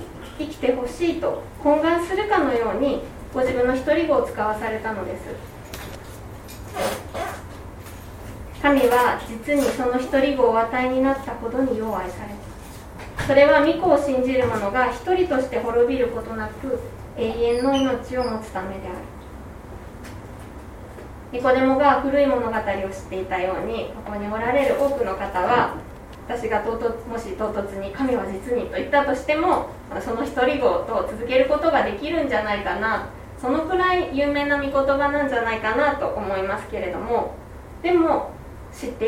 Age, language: 20-39, Japanese